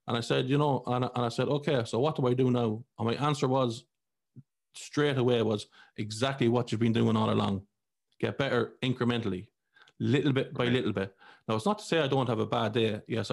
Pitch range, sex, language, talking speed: 115-135 Hz, male, English, 220 wpm